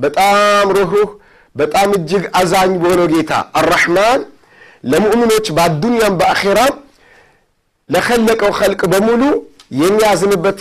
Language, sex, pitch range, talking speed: Amharic, male, 175-215 Hz, 95 wpm